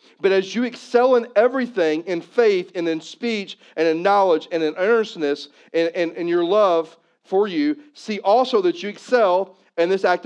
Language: English